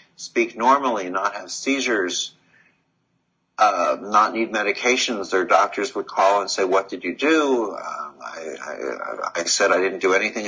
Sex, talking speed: male, 160 wpm